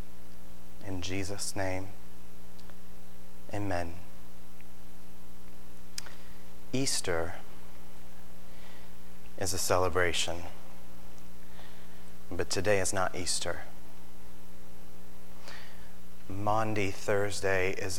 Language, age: English, 30-49